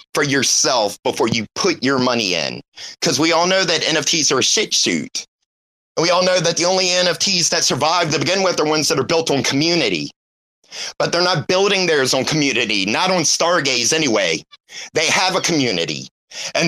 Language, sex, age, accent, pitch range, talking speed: English, male, 30-49, American, 145-190 Hz, 195 wpm